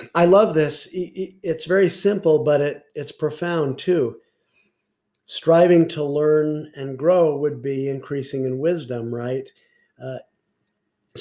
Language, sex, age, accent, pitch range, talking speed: English, male, 50-69, American, 135-160 Hz, 125 wpm